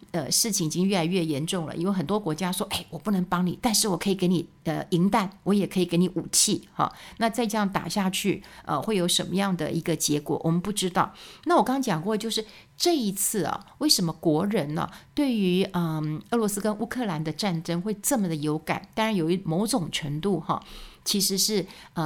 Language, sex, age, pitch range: Chinese, female, 60-79, 165-200 Hz